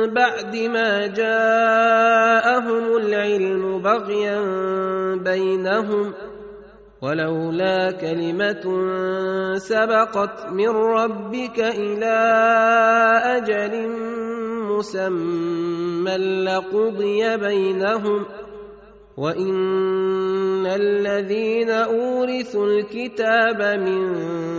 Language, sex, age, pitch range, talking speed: Arabic, male, 30-49, 190-225 Hz, 55 wpm